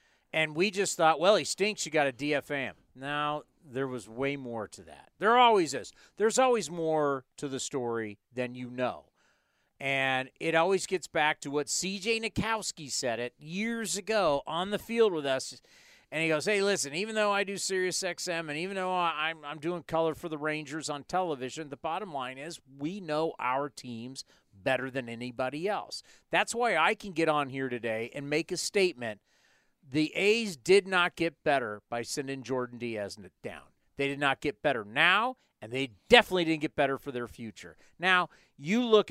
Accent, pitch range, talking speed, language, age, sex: American, 135-195 Hz, 190 wpm, English, 40-59, male